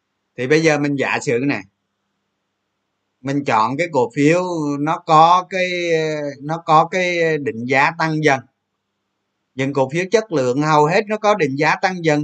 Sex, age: male, 20-39